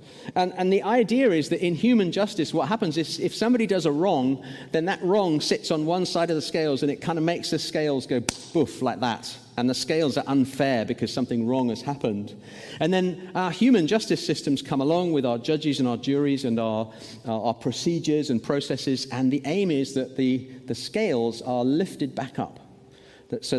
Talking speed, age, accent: 210 wpm, 40-59, British